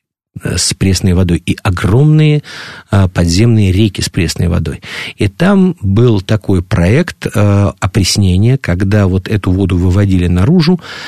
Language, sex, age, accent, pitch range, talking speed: Russian, male, 50-69, native, 100-145 Hz, 130 wpm